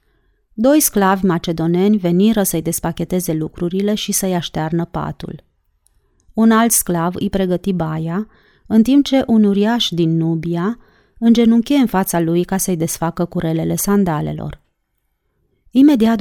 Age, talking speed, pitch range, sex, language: 30-49, 125 wpm, 170-220 Hz, female, Romanian